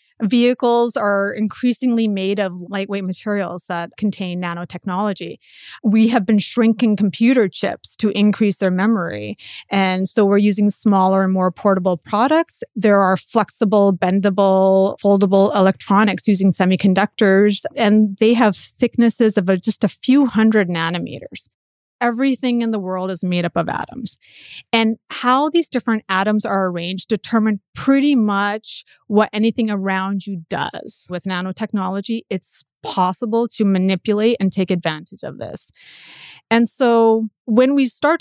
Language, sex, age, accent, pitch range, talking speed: English, female, 30-49, American, 190-225 Hz, 135 wpm